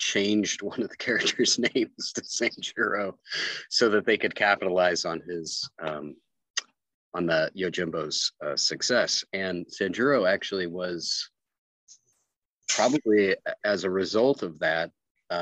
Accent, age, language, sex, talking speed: American, 40-59, English, male, 120 wpm